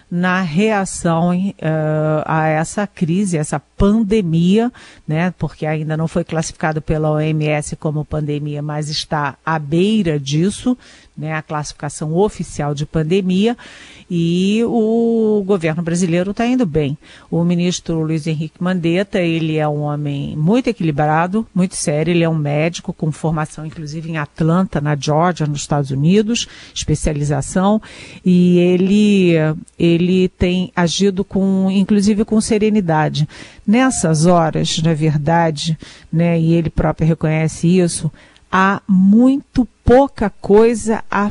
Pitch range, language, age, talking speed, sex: 155-200 Hz, Portuguese, 50-69, 130 wpm, female